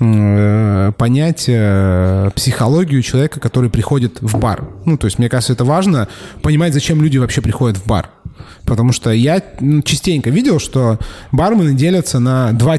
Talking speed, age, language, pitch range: 150 wpm, 20-39, Russian, 115-150 Hz